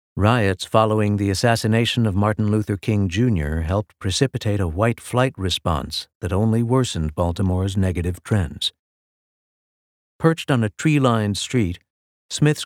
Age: 60-79